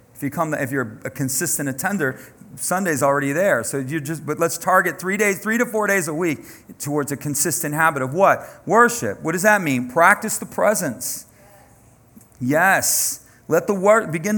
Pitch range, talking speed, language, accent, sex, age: 135-185 Hz, 185 wpm, English, American, male, 40-59